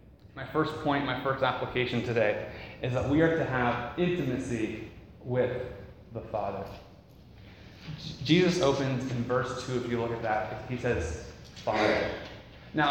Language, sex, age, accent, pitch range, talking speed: English, male, 20-39, American, 115-145 Hz, 145 wpm